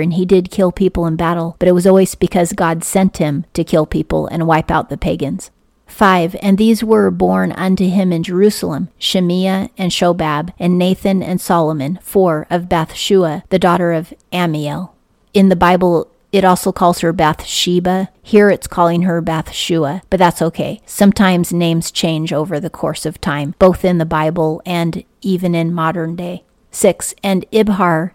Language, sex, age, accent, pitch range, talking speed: English, female, 40-59, American, 165-190 Hz, 180 wpm